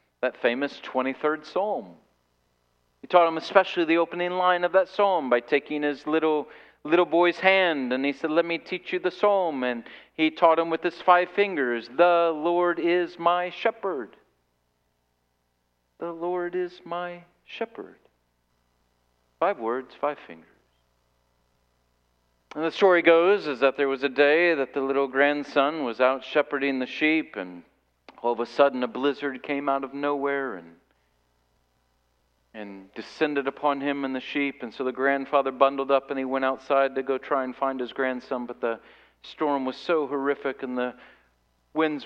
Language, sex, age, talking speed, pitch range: English, male, 40-59, 165 wpm, 115-150 Hz